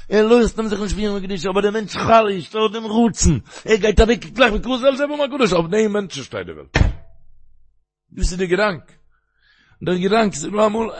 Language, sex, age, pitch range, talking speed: Hebrew, male, 60-79, 130-215 Hz, 165 wpm